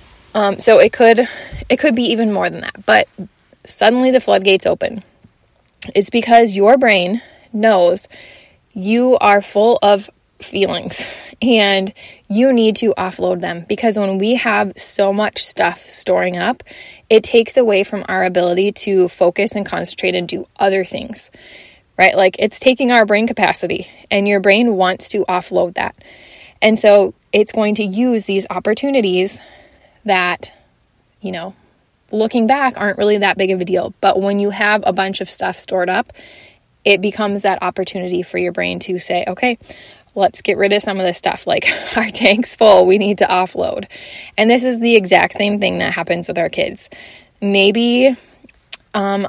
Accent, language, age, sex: American, English, 20-39, female